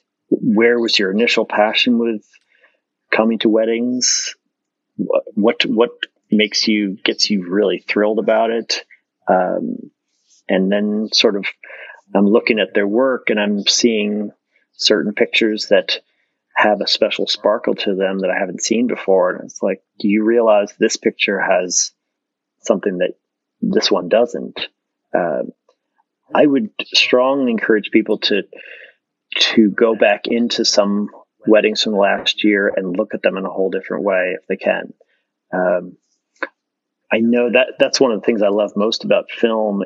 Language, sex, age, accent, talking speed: English, male, 30-49, American, 155 wpm